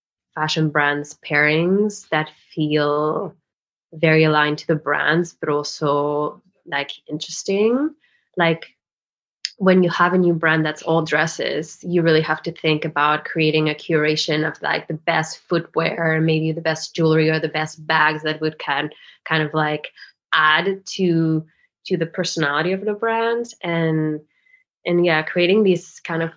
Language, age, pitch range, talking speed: English, 20-39, 155-175 Hz, 155 wpm